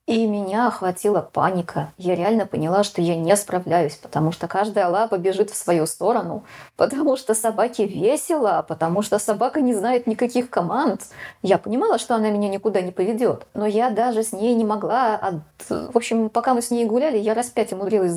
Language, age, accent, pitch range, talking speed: Russian, 20-39, native, 190-230 Hz, 185 wpm